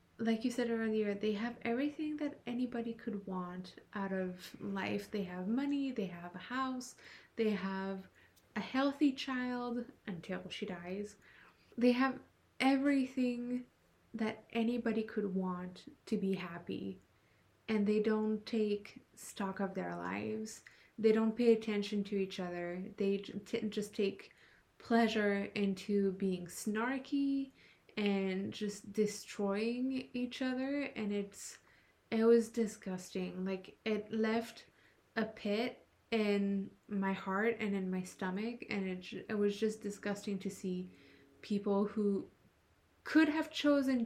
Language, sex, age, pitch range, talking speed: English, female, 20-39, 195-235 Hz, 130 wpm